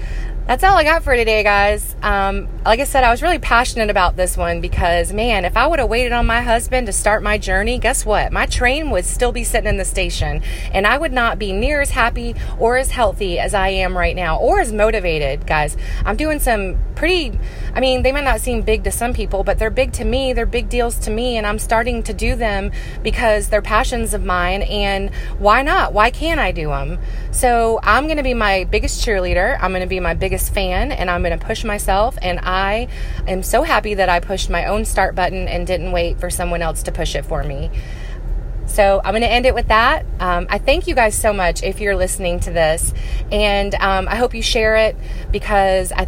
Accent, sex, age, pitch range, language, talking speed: American, female, 30-49, 175-225 Hz, English, 235 wpm